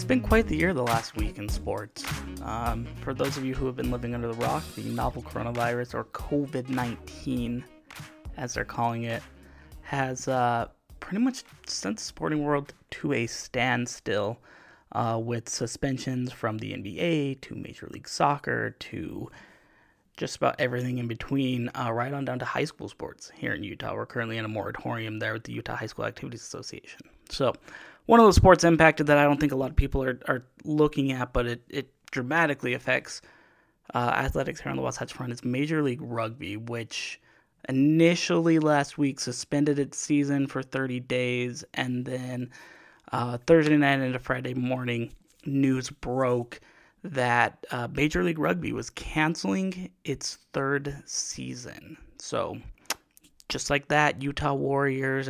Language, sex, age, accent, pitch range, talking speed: English, male, 20-39, American, 120-145 Hz, 165 wpm